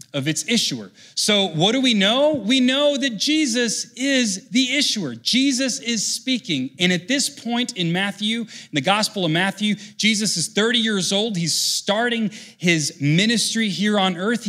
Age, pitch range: 30-49, 170-230 Hz